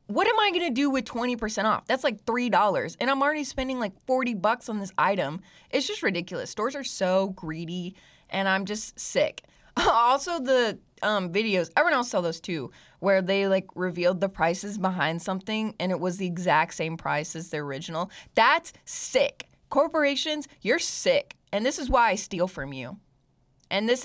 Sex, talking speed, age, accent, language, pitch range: female, 185 wpm, 20-39, American, English, 185-265 Hz